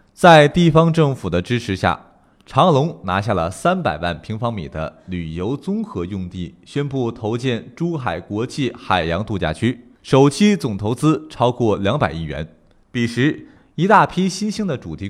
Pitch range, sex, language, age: 95-155 Hz, male, Chinese, 20-39